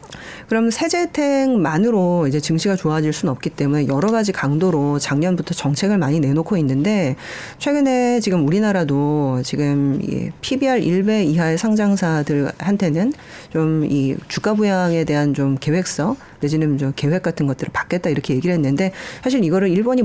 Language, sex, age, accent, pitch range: Korean, female, 40-59, native, 150-220 Hz